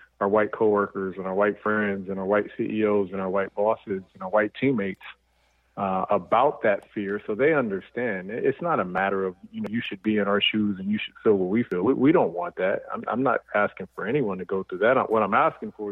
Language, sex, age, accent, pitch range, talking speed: English, male, 40-59, American, 95-110 Hz, 245 wpm